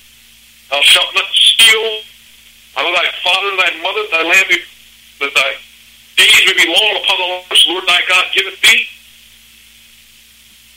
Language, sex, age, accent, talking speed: English, male, 60-79, American, 150 wpm